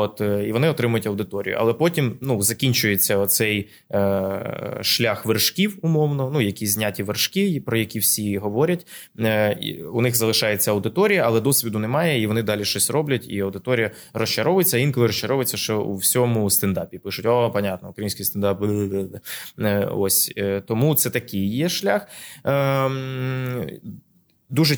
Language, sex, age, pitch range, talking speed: Ukrainian, male, 20-39, 100-130 Hz, 135 wpm